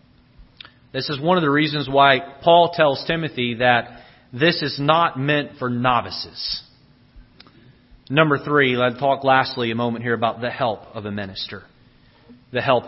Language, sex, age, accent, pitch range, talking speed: English, male, 40-59, American, 115-140 Hz, 155 wpm